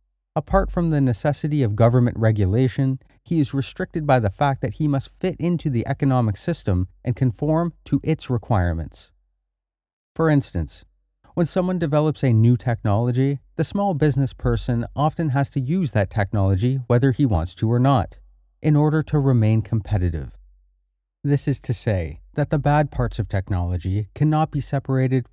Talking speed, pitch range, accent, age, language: 160 wpm, 95-145 Hz, American, 30-49, English